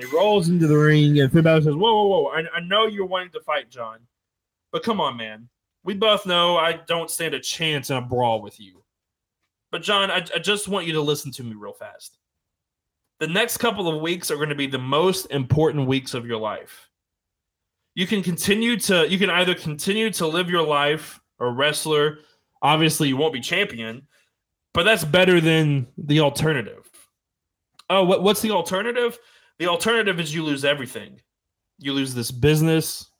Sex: male